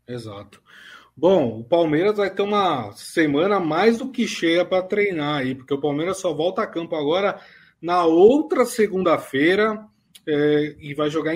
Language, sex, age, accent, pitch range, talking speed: Portuguese, male, 20-39, Brazilian, 145-180 Hz, 155 wpm